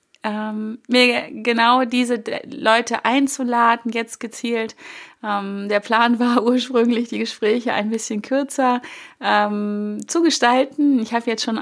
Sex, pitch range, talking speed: female, 210-250 Hz, 115 wpm